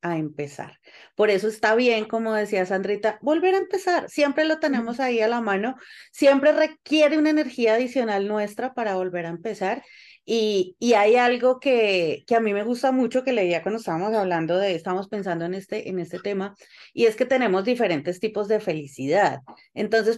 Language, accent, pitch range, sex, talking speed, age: Spanish, Colombian, 180-225 Hz, female, 185 wpm, 30-49